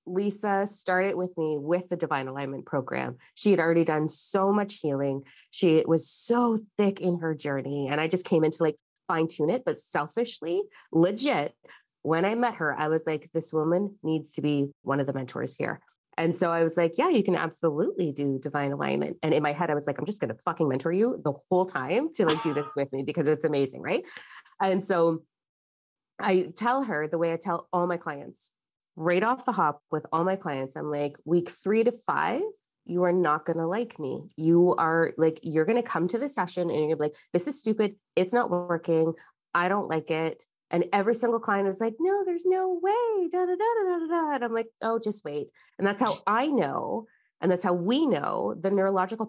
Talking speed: 225 wpm